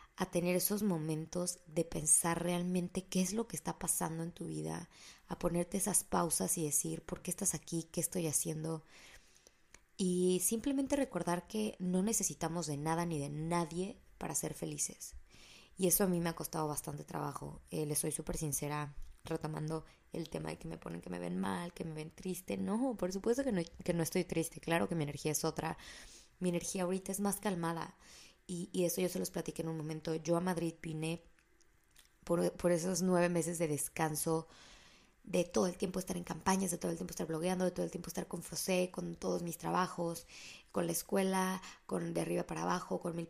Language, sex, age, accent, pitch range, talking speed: Spanish, female, 20-39, Mexican, 160-185 Hz, 205 wpm